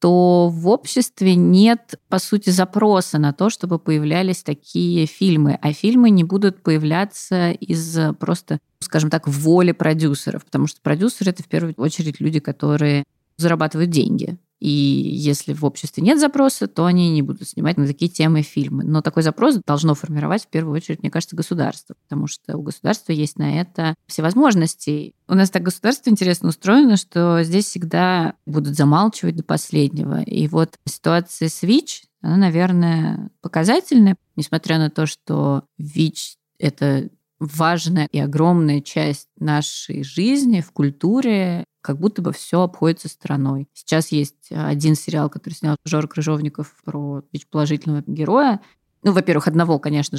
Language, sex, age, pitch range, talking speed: Russian, female, 20-39, 150-185 Hz, 150 wpm